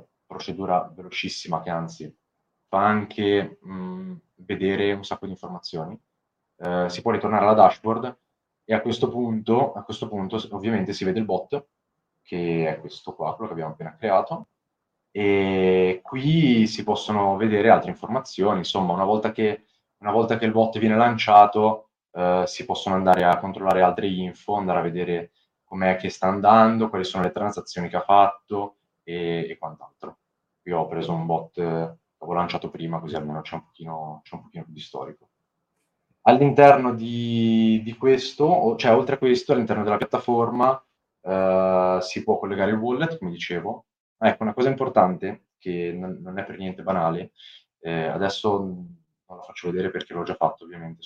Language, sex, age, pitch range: Italian, male, 20-39, 90-115 Hz